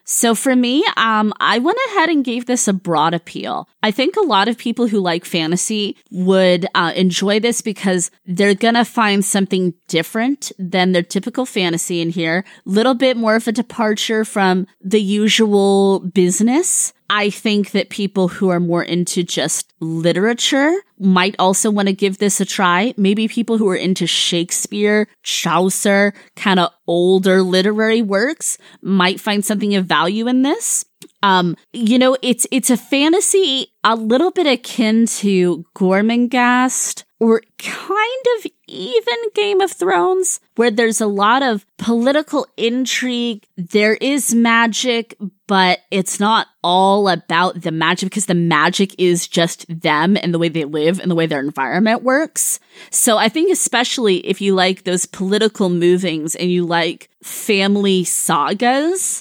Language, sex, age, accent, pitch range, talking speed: English, female, 20-39, American, 185-235 Hz, 155 wpm